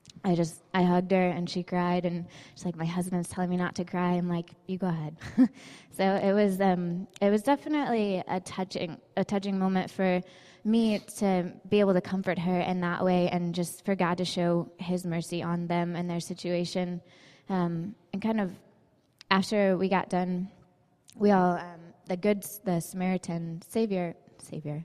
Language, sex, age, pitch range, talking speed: English, female, 20-39, 175-190 Hz, 185 wpm